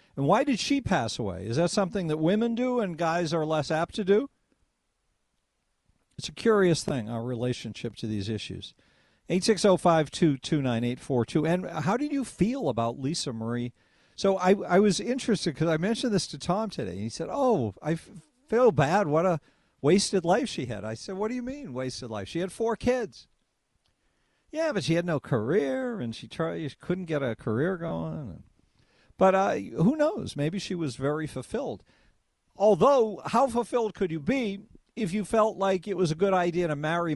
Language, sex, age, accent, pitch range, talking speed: English, male, 50-69, American, 130-200 Hz, 185 wpm